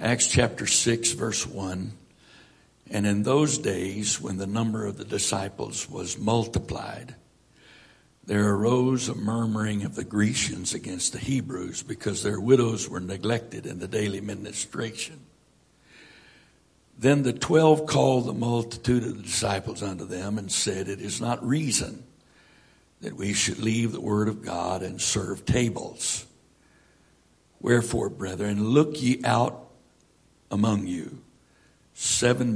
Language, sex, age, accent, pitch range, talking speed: English, male, 60-79, American, 100-120 Hz, 135 wpm